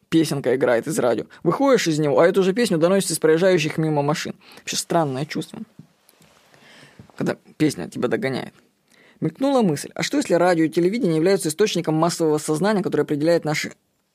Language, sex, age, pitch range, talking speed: Russian, female, 20-39, 160-205 Hz, 160 wpm